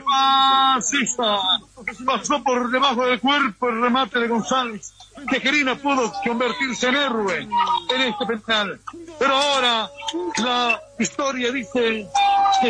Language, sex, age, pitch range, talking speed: Spanish, male, 60-79, 230-270 Hz, 120 wpm